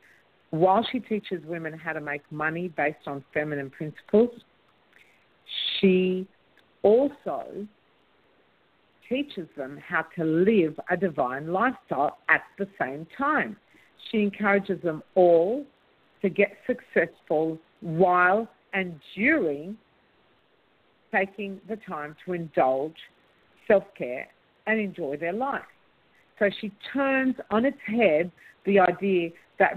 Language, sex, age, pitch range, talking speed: English, female, 50-69, 155-200 Hz, 110 wpm